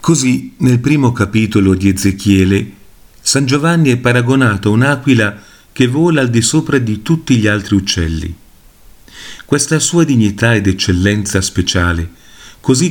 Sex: male